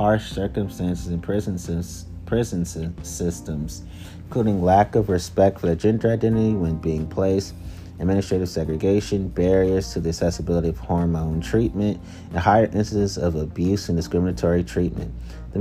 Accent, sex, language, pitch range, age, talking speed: American, male, English, 85-105 Hz, 30-49, 125 wpm